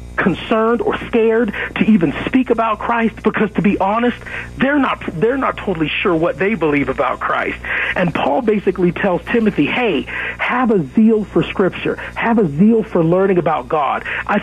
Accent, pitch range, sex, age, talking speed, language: American, 175-220 Hz, male, 40-59, 175 wpm, English